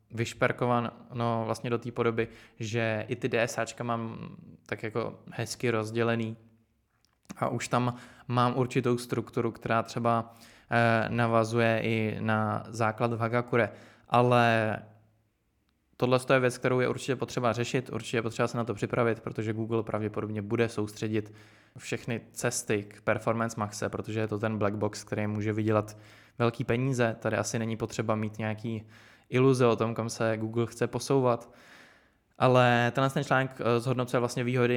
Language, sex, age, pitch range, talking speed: Czech, male, 20-39, 110-120 Hz, 145 wpm